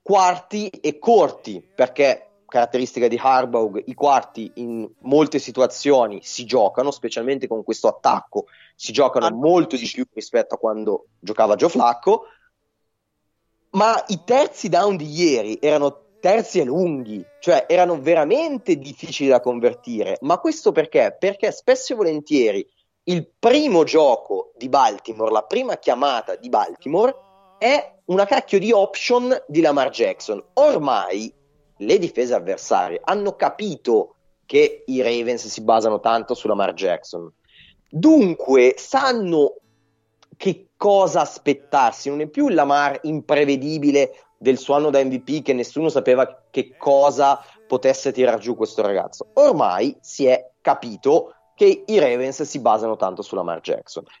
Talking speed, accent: 135 wpm, native